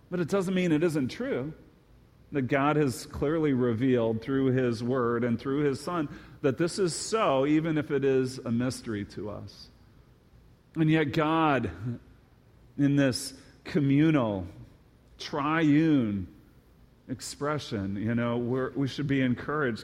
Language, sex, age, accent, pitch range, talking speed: English, male, 40-59, American, 120-165 Hz, 140 wpm